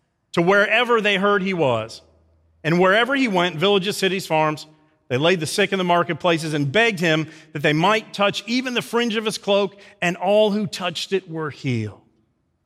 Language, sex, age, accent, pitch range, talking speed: English, male, 40-59, American, 180-220 Hz, 190 wpm